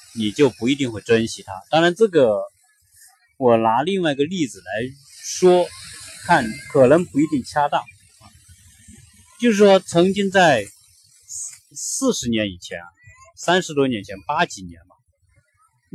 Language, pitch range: Chinese, 105-155 Hz